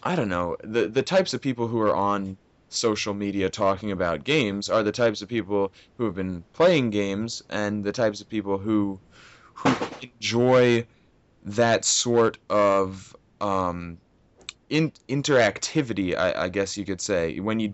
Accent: American